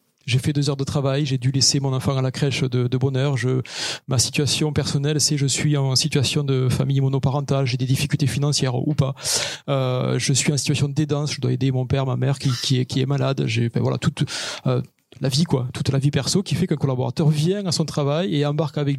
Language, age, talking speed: French, 40-59, 245 wpm